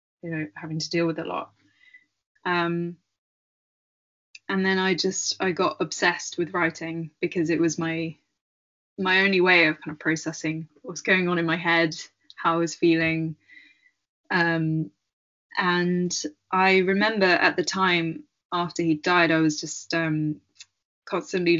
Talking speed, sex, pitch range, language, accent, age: 145 wpm, female, 160-185 Hz, English, British, 10-29